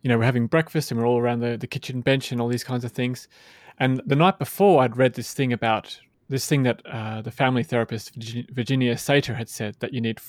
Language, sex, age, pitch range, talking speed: English, male, 20-39, 120-140 Hz, 245 wpm